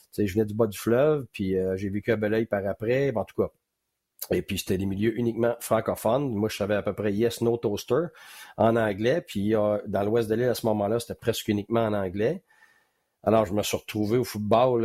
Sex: male